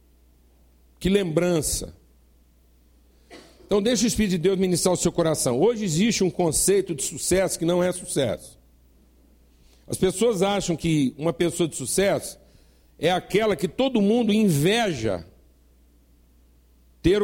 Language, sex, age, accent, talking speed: Portuguese, male, 60-79, Brazilian, 130 wpm